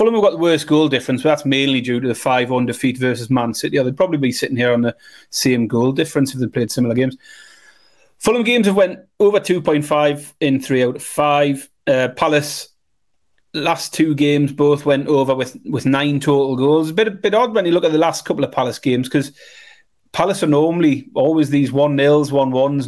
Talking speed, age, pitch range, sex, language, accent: 210 wpm, 30-49, 130-160 Hz, male, English, British